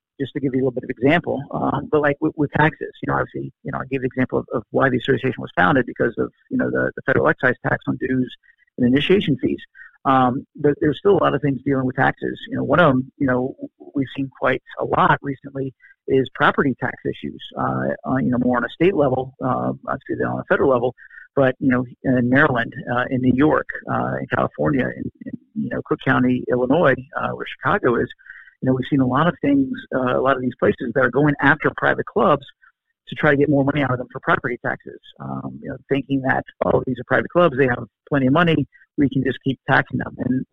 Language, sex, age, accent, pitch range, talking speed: English, male, 50-69, American, 125-145 Hz, 245 wpm